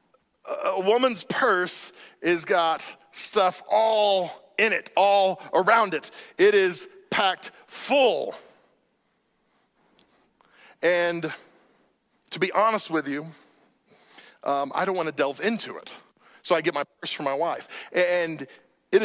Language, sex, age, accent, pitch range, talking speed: English, male, 40-59, American, 165-240 Hz, 125 wpm